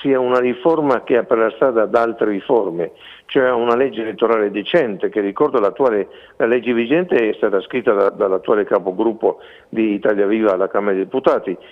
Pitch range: 110-140 Hz